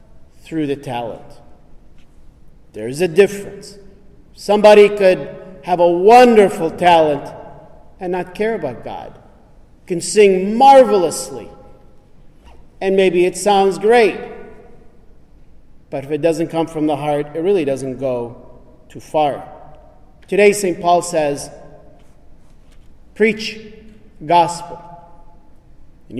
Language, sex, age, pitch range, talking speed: English, male, 40-59, 145-200 Hz, 105 wpm